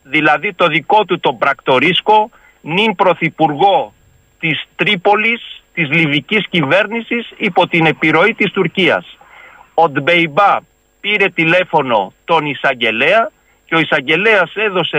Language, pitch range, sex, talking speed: Greek, 140-185 Hz, male, 110 wpm